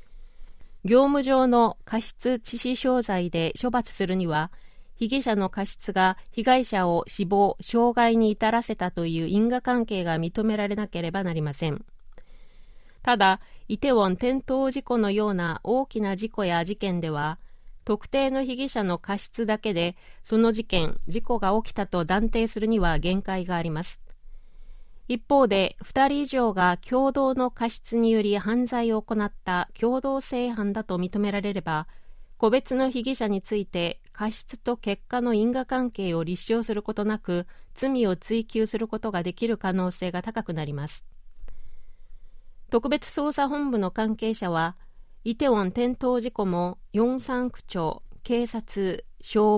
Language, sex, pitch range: Japanese, female, 185-245 Hz